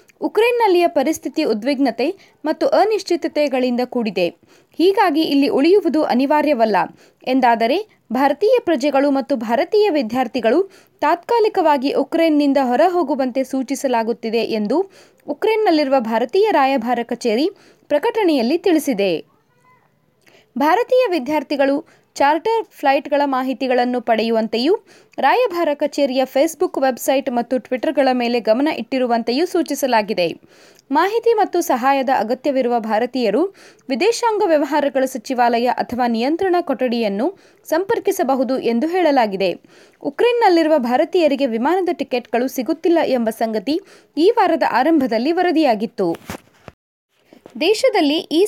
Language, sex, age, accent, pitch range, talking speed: Kannada, female, 20-39, native, 250-345 Hz, 85 wpm